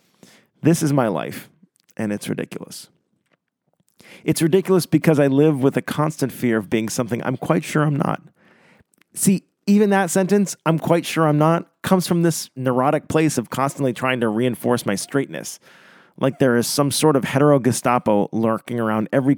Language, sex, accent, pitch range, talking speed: English, male, American, 125-160 Hz, 175 wpm